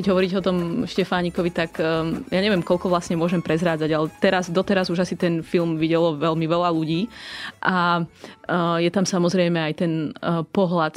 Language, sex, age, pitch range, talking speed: Slovak, female, 20-39, 165-190 Hz, 175 wpm